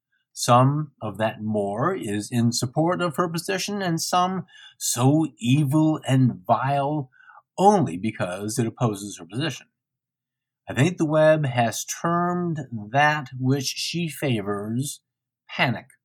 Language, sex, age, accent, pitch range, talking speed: English, male, 50-69, American, 120-160 Hz, 125 wpm